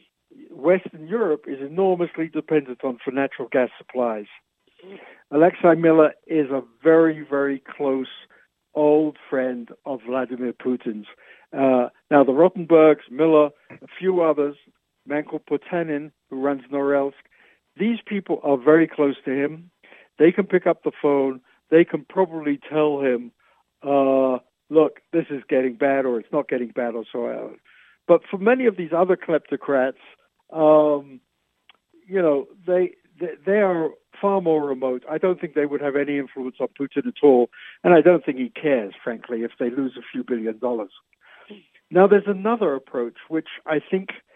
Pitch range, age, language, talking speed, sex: 135-170 Hz, 60-79, English, 155 wpm, male